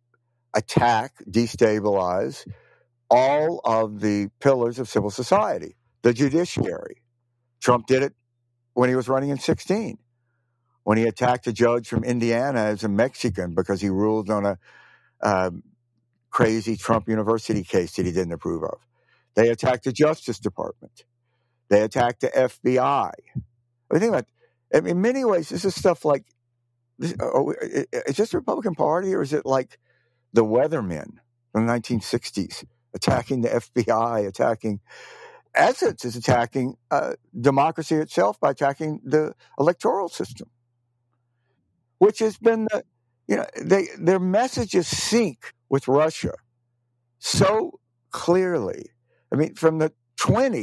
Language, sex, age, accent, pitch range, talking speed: English, male, 60-79, American, 115-135 Hz, 135 wpm